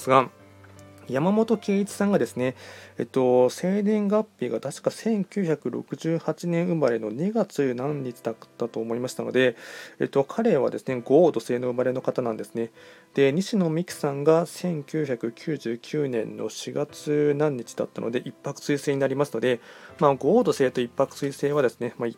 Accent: native